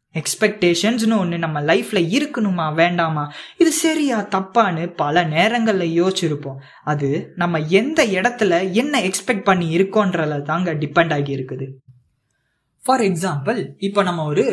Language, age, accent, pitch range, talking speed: Tamil, 20-39, native, 155-210 Hz, 50 wpm